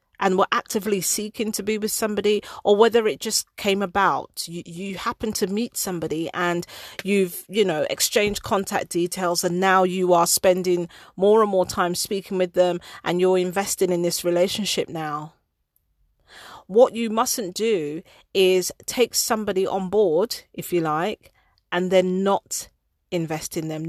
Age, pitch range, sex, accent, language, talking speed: 40-59, 175-215 Hz, female, British, English, 160 wpm